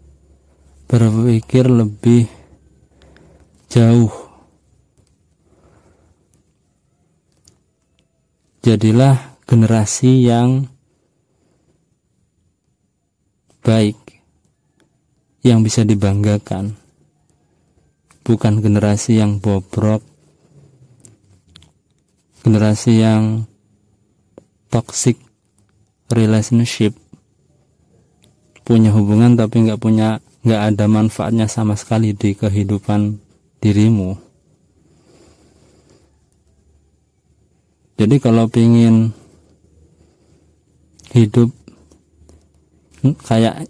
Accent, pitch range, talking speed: native, 100-115 Hz, 50 wpm